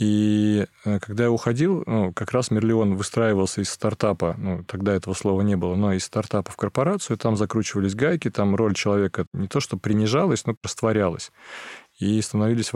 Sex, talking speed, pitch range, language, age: male, 170 wpm, 100-115 Hz, Russian, 20-39